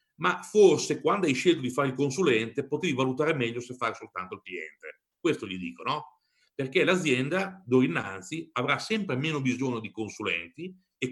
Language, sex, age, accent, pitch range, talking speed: Italian, male, 40-59, native, 125-185 Hz, 175 wpm